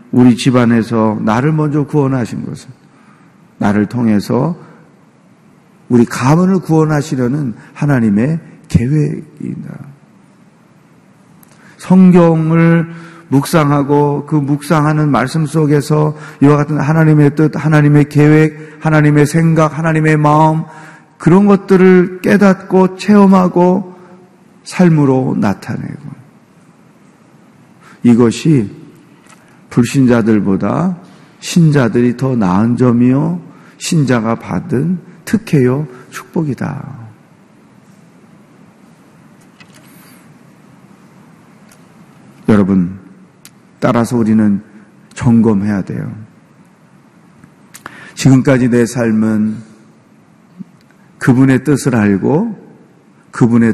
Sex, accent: male, native